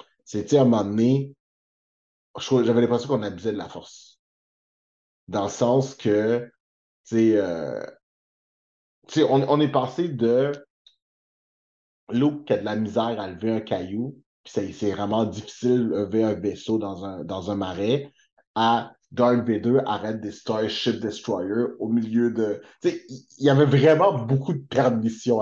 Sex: male